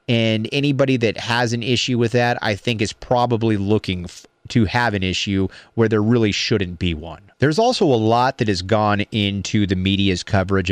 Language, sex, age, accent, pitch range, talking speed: English, male, 30-49, American, 100-140 Hz, 190 wpm